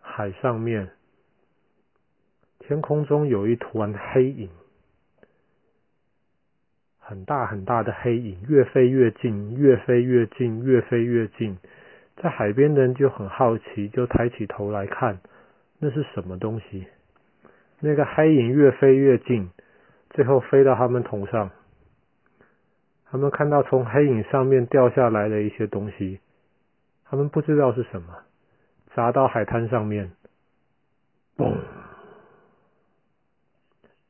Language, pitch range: Chinese, 105-130 Hz